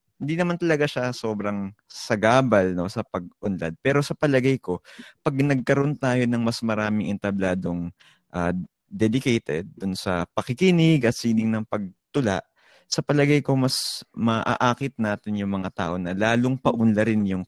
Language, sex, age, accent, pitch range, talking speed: Filipino, male, 20-39, native, 95-140 Hz, 145 wpm